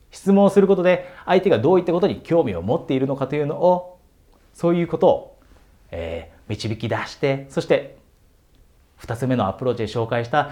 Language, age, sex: Japanese, 40-59, male